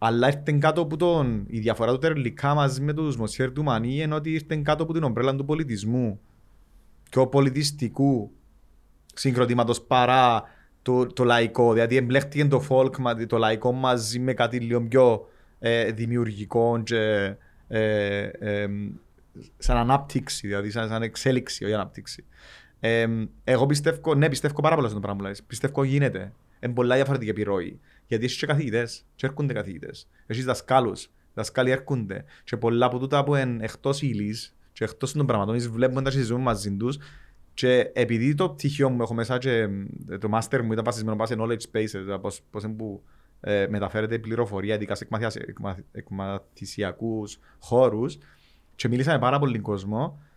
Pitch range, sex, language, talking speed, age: 105-135 Hz, male, Greek, 160 wpm, 30-49